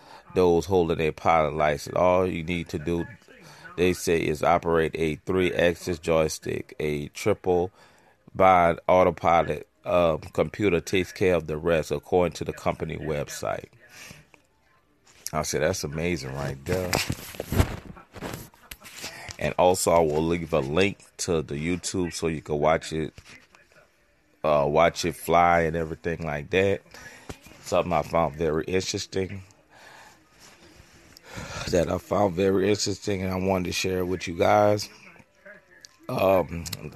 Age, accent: 30-49, American